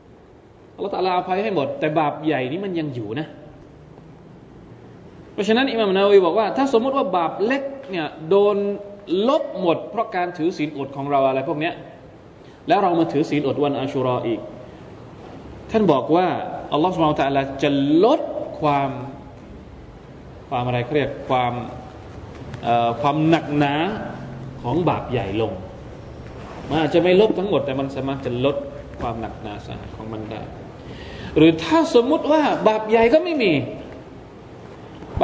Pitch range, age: 125-190 Hz, 20-39